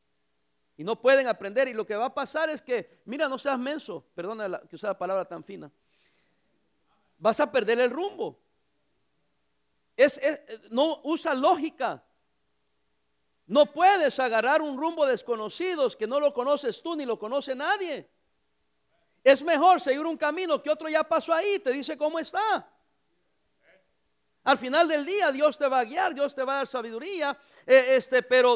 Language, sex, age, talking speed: English, male, 50-69, 170 wpm